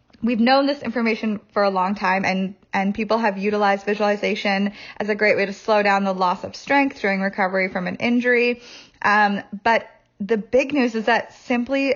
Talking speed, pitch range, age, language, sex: 190 wpm, 195-235 Hz, 20-39, English, female